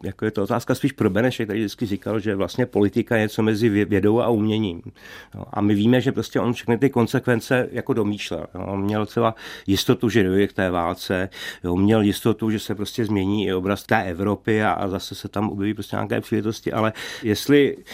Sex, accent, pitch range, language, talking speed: male, native, 100-120 Hz, Czech, 210 wpm